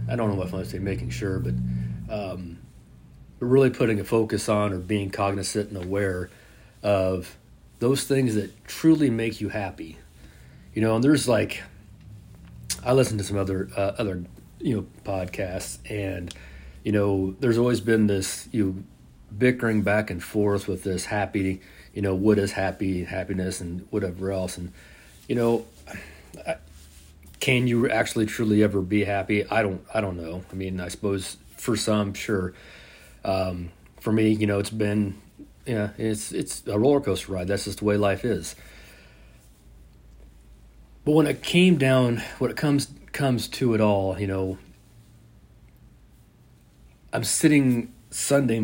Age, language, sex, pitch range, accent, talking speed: 40-59, English, male, 90-110 Hz, American, 160 wpm